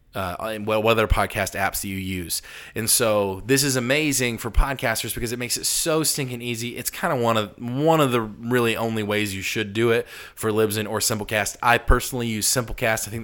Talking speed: 215 wpm